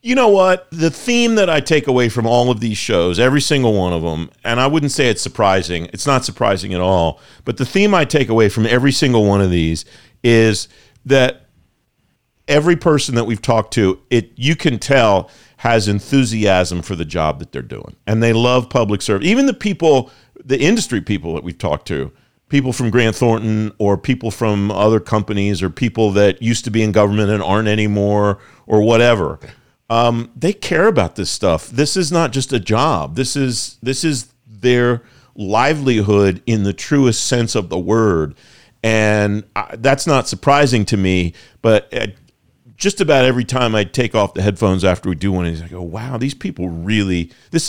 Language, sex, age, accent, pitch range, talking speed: English, male, 50-69, American, 100-130 Hz, 190 wpm